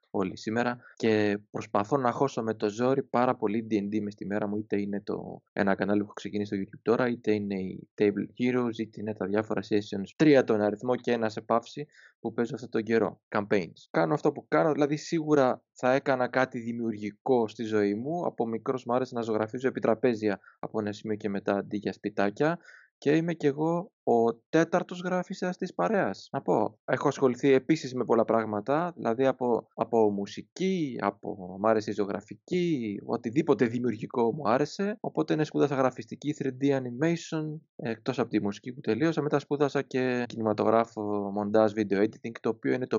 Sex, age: male, 20-39